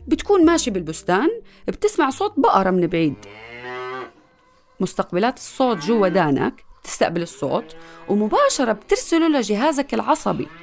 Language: Arabic